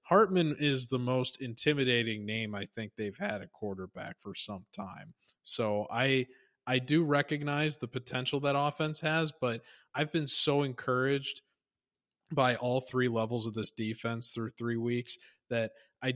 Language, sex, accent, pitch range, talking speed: English, male, American, 105-130 Hz, 155 wpm